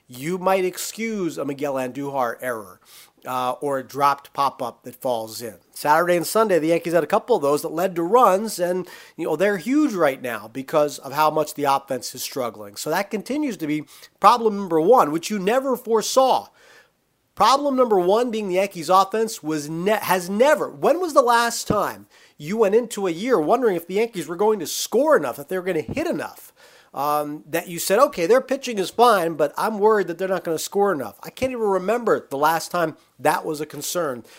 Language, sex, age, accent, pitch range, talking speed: English, male, 40-59, American, 140-195 Hz, 215 wpm